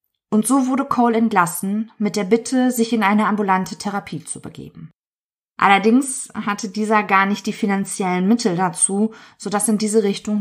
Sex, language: female, German